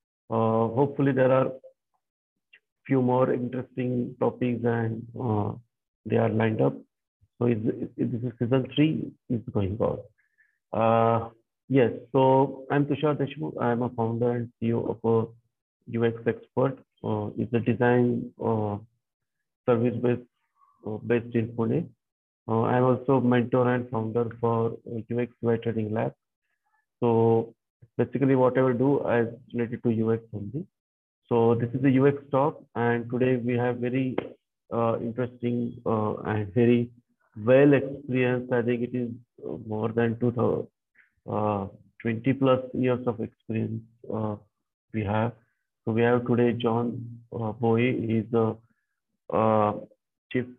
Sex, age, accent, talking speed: male, 50-69, Indian, 135 wpm